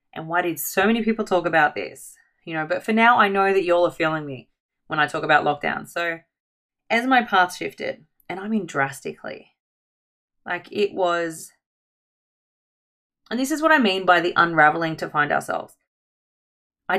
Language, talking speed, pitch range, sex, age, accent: English, 180 wpm, 160-205 Hz, female, 20-39, Australian